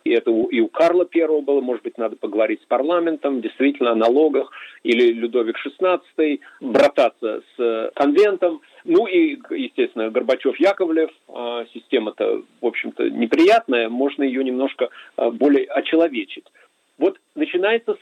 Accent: native